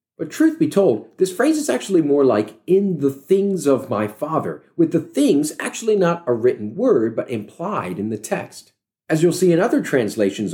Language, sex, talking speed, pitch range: English, male, 200 wpm, 130-195 Hz